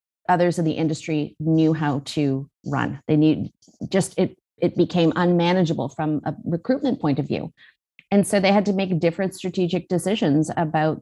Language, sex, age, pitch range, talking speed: English, female, 30-49, 155-195 Hz, 170 wpm